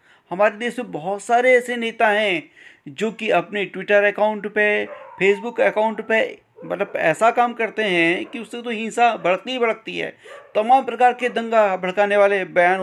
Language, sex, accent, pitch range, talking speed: Hindi, male, native, 180-235 Hz, 175 wpm